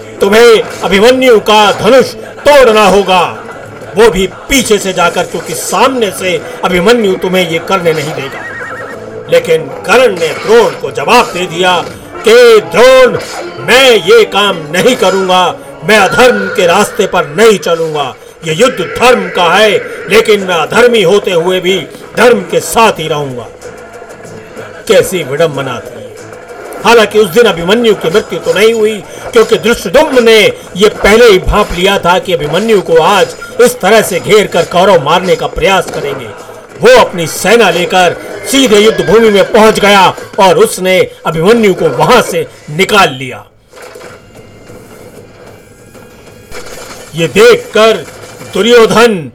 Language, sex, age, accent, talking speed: Hindi, male, 50-69, native, 140 wpm